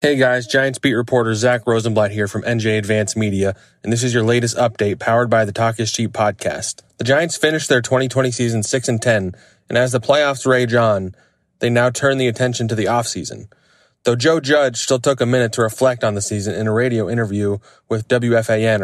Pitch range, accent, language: 110-125 Hz, American, English